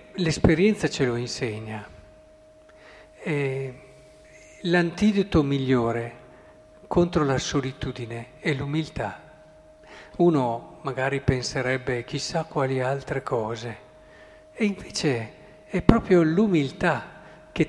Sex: male